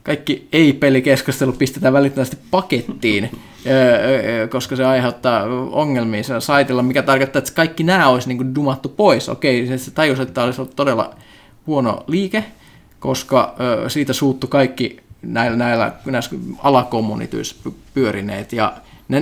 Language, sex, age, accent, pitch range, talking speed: Finnish, male, 20-39, native, 115-130 Hz, 110 wpm